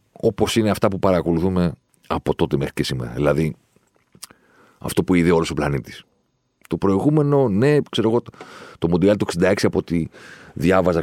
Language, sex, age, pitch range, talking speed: Greek, male, 40-59, 85-115 Hz, 165 wpm